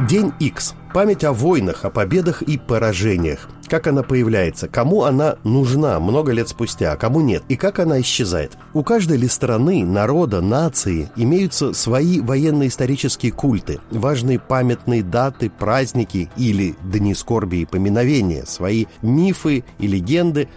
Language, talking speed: Russian, 140 wpm